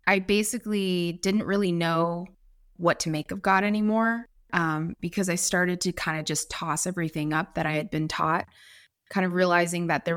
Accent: American